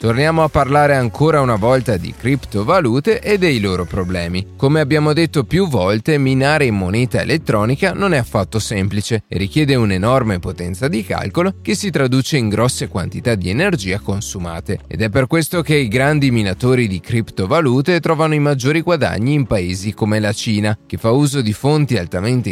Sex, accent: male, native